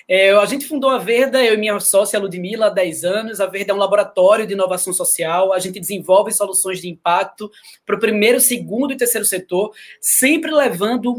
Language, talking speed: Portuguese, 195 wpm